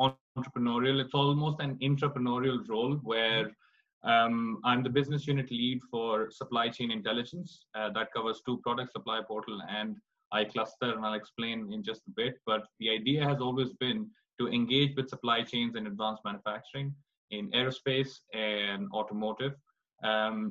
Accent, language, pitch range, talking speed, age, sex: Indian, English, 110-130 Hz, 155 wpm, 20-39, male